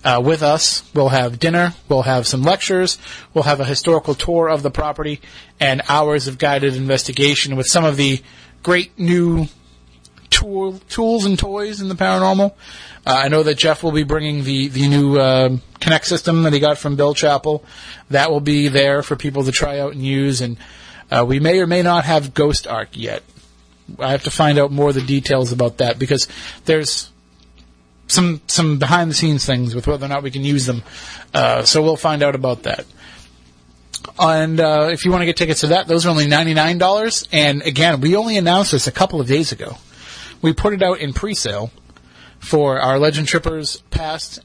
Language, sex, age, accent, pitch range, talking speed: English, male, 30-49, American, 135-165 Hz, 195 wpm